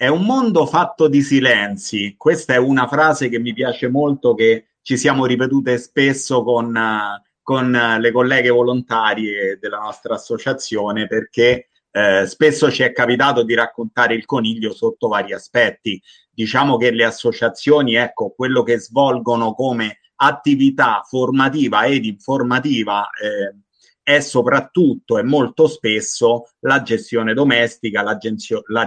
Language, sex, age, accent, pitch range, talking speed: English, male, 30-49, Italian, 115-140 Hz, 130 wpm